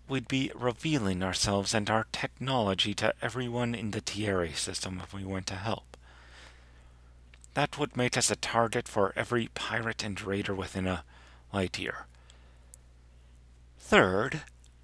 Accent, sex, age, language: American, male, 40-59, English